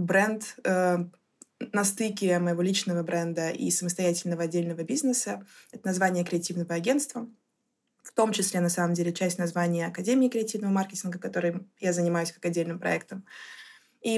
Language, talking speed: Russian, 140 wpm